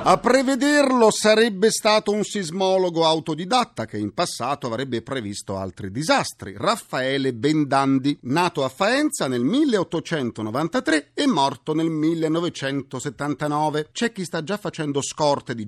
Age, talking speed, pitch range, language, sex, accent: 40-59, 125 wpm, 125-195 Hz, Italian, male, native